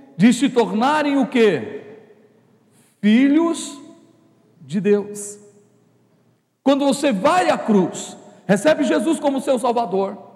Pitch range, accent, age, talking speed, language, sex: 195-255 Hz, Brazilian, 40-59, 105 wpm, Portuguese, male